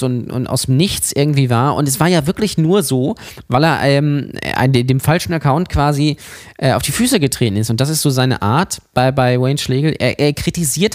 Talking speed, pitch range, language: 215 wpm, 125-155 Hz, German